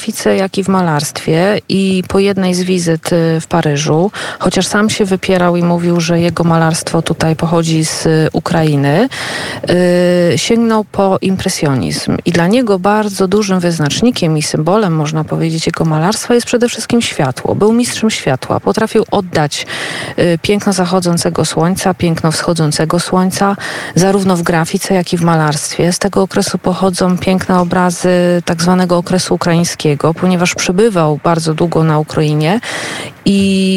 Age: 40-59